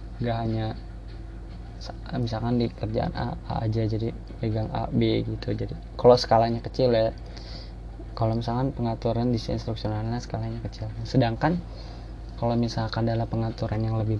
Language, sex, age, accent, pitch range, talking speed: Indonesian, male, 20-39, native, 110-120 Hz, 135 wpm